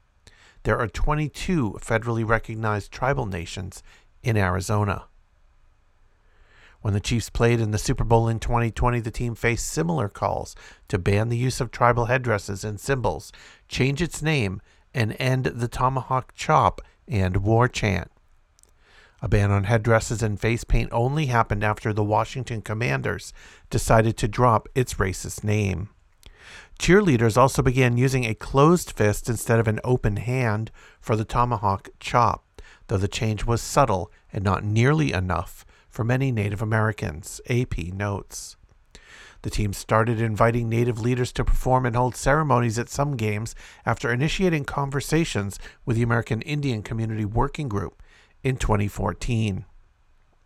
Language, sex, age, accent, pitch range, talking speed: English, male, 50-69, American, 105-125 Hz, 145 wpm